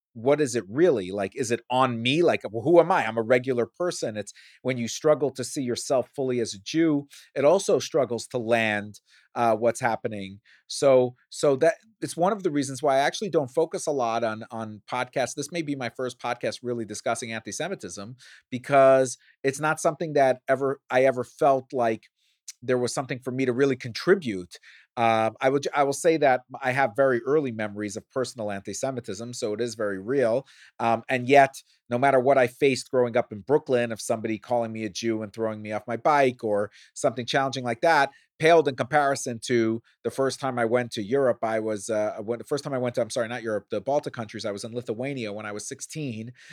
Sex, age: male, 30-49